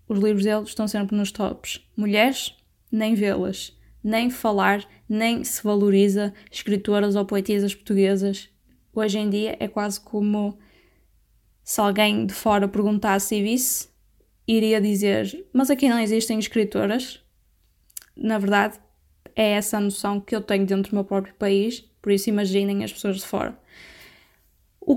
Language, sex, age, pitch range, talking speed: Portuguese, female, 10-29, 205-225 Hz, 145 wpm